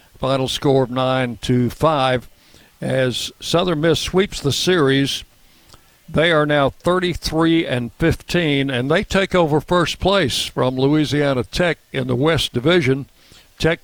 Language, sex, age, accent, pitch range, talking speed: English, male, 60-79, American, 125-155 Hz, 140 wpm